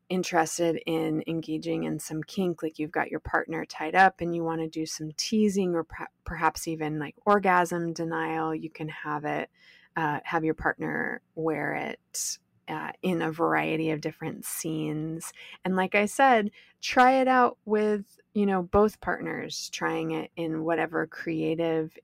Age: 20-39